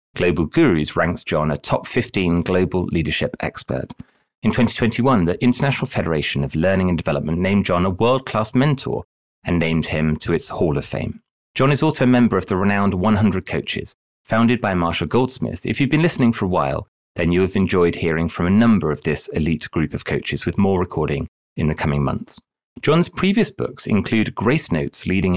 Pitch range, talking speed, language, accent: 85-115 Hz, 195 wpm, English, British